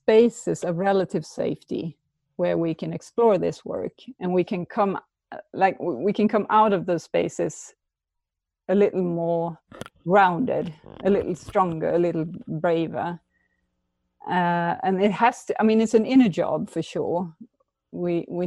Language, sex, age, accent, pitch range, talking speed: English, female, 30-49, Swedish, 160-205 Hz, 155 wpm